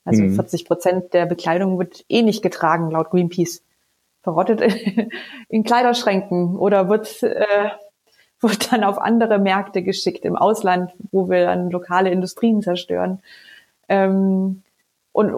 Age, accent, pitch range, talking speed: 30-49, German, 175-205 Hz, 125 wpm